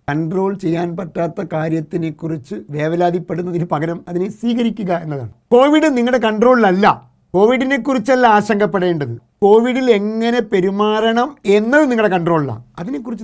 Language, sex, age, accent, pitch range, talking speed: Malayalam, male, 50-69, native, 160-210 Hz, 100 wpm